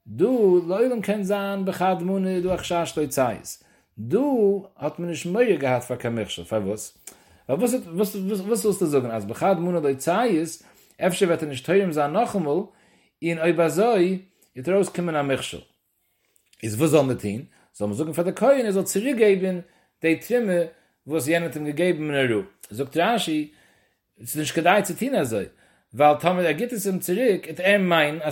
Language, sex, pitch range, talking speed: English, male, 145-200 Hz, 45 wpm